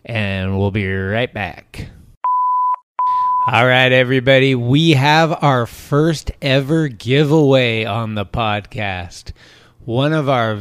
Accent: American